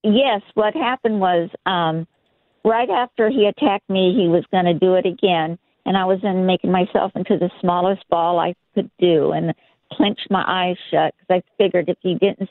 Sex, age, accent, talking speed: female, 50-69, American, 195 wpm